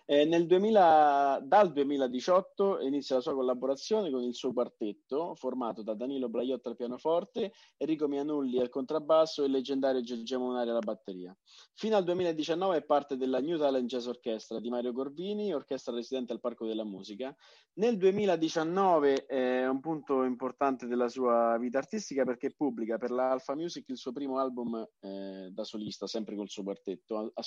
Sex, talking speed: male, 170 wpm